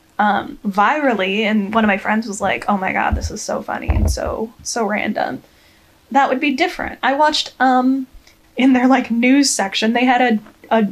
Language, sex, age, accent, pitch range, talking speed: English, female, 10-29, American, 210-260 Hz, 200 wpm